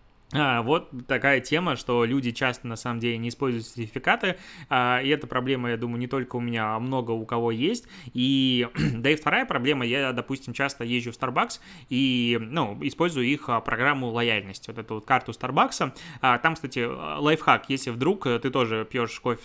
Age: 20-39